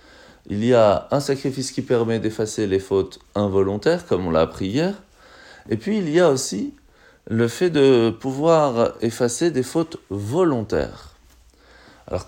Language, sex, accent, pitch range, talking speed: French, male, French, 105-140 Hz, 150 wpm